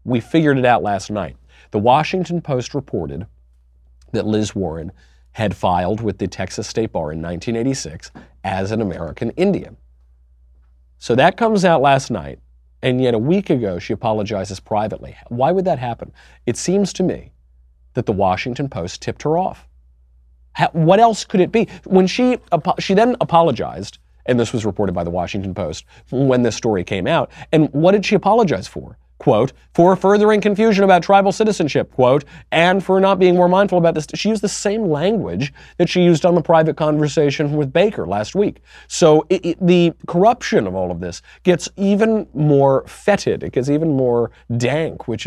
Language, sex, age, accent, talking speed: English, male, 40-59, American, 180 wpm